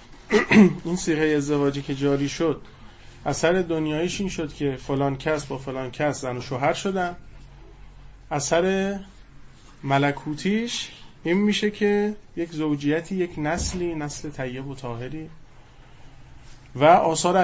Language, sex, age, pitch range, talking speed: Persian, male, 30-49, 125-155 Hz, 120 wpm